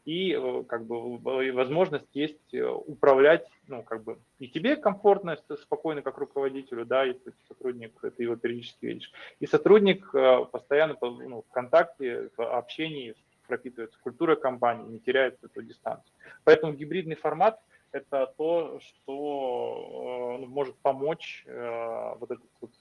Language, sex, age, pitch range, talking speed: Russian, male, 20-39, 125-160 Hz, 130 wpm